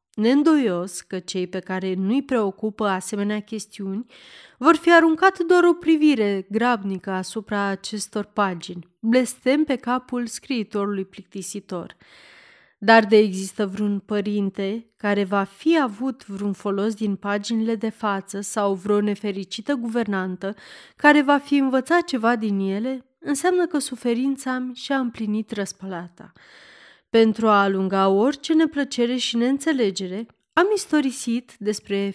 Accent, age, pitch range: native, 30-49, 195-255 Hz